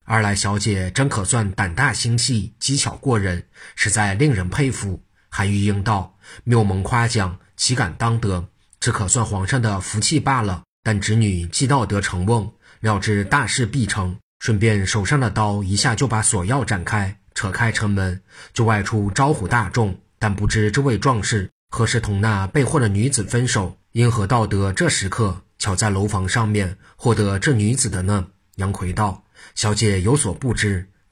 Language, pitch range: Chinese, 100-120 Hz